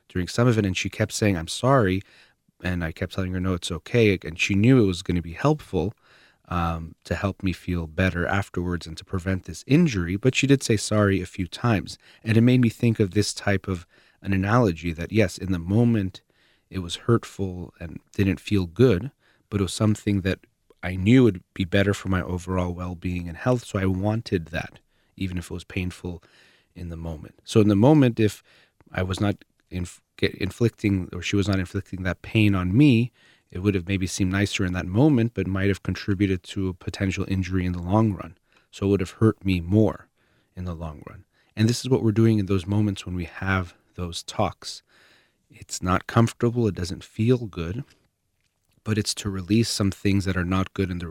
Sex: male